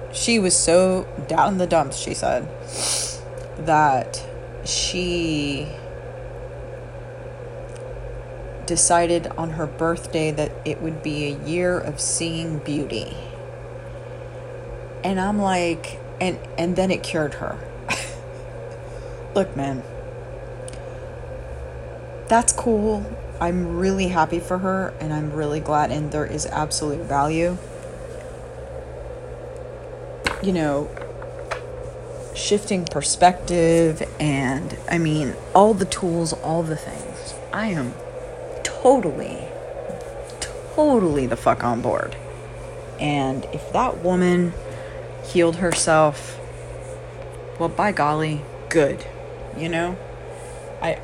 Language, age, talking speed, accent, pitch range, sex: English, 30-49, 100 wpm, American, 140-185 Hz, female